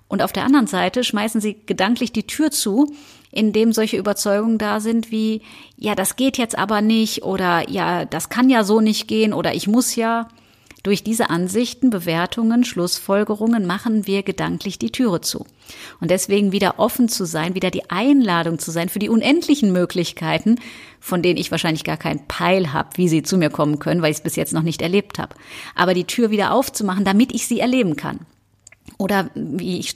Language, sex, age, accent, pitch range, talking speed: German, female, 30-49, German, 180-230 Hz, 190 wpm